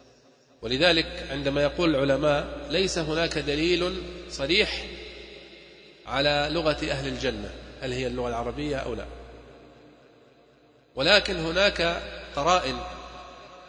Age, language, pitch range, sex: 40-59, Arabic, 135-175 Hz, male